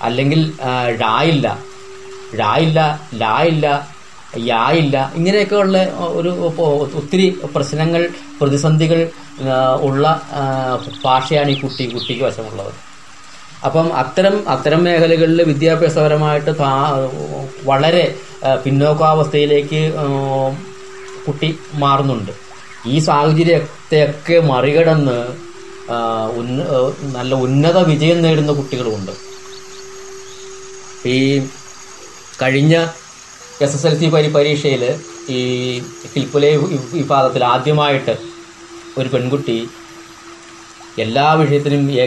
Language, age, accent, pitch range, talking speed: Malayalam, 20-39, native, 130-170 Hz, 75 wpm